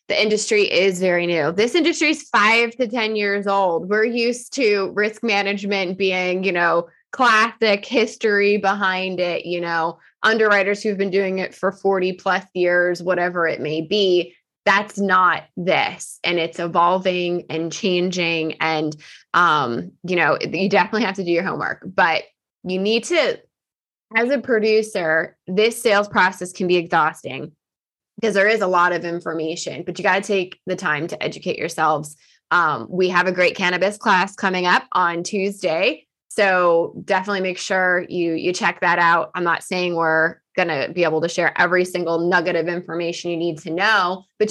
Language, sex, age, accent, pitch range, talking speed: English, female, 20-39, American, 175-210 Hz, 170 wpm